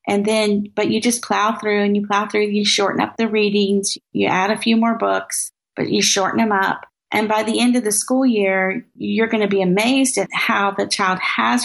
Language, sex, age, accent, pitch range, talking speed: English, female, 40-59, American, 200-245 Hz, 230 wpm